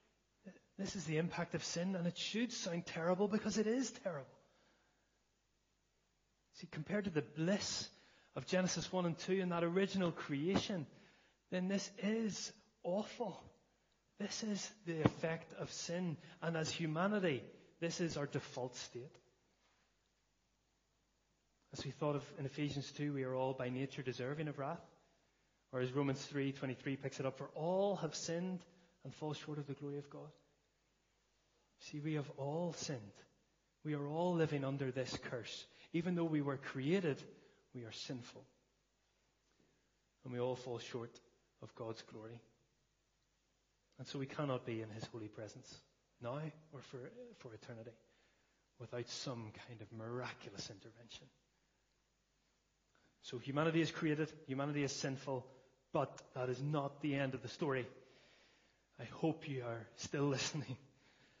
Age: 30-49